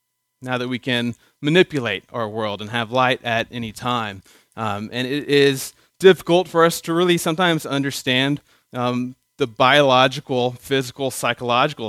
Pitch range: 120-155 Hz